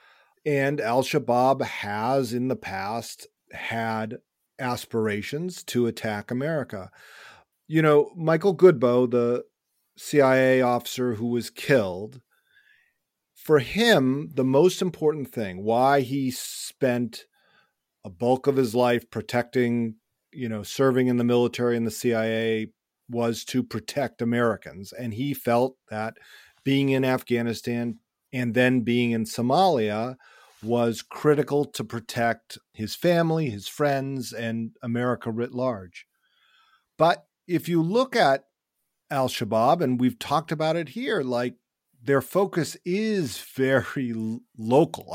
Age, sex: 40-59, male